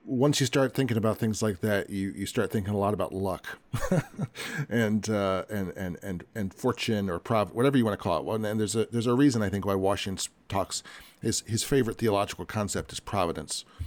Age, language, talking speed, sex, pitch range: 40-59, English, 210 wpm, male, 105-130 Hz